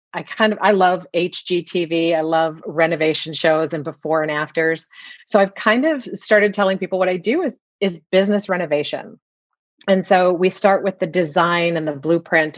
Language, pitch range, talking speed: English, 160-195 Hz, 180 wpm